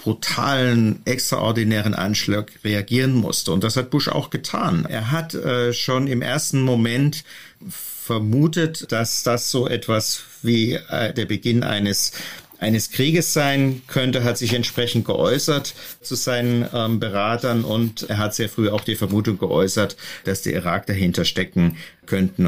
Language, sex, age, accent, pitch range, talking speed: German, male, 50-69, German, 110-130 Hz, 145 wpm